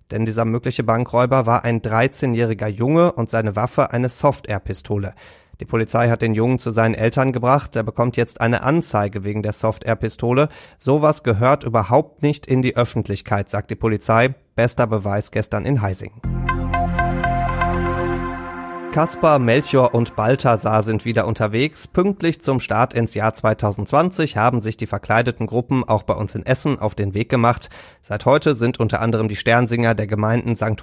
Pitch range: 110-130 Hz